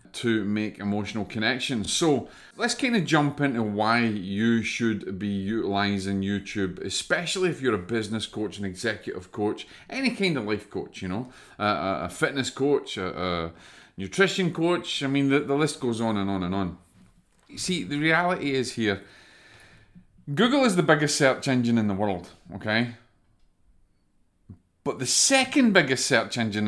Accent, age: British, 30-49